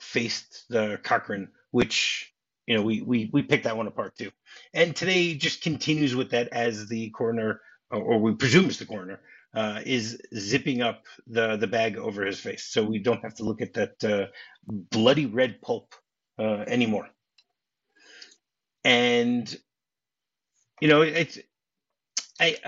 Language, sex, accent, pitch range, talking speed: English, male, American, 110-145 Hz, 150 wpm